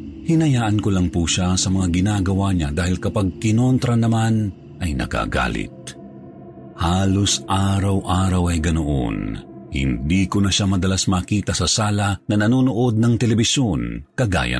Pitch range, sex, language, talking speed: 75-105 Hz, male, Filipino, 130 wpm